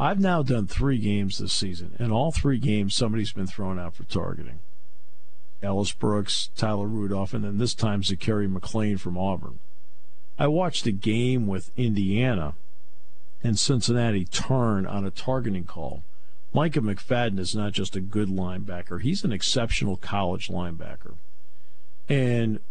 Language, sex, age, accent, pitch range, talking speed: English, male, 50-69, American, 75-120 Hz, 150 wpm